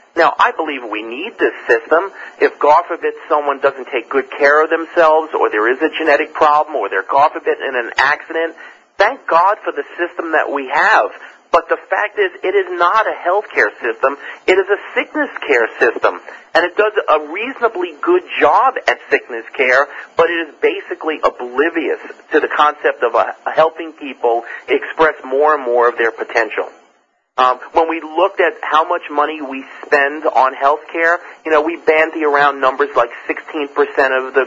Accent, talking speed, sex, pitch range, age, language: American, 185 wpm, male, 145-190 Hz, 40-59, English